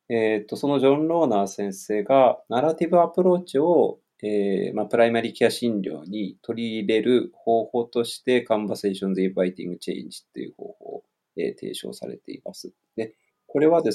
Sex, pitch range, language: male, 105-150 Hz, Japanese